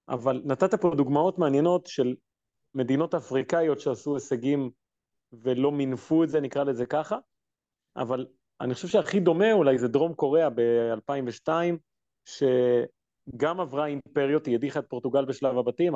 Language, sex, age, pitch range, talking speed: Hebrew, male, 30-49, 125-165 Hz, 130 wpm